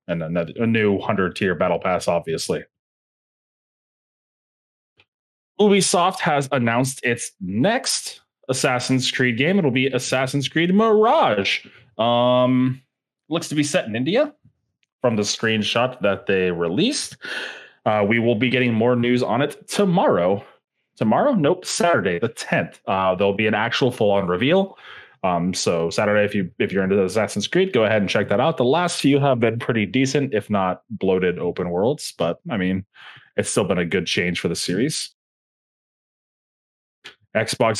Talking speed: 155 wpm